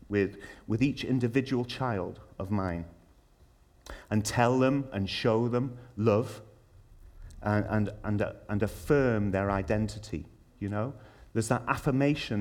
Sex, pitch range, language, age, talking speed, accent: male, 90-115 Hz, English, 30-49, 120 wpm, British